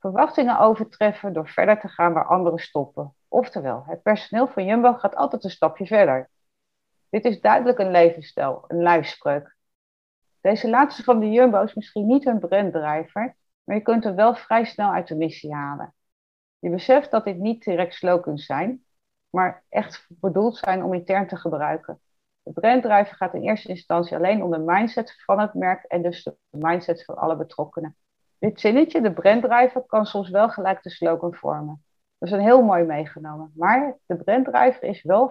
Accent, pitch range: Dutch, 165-225 Hz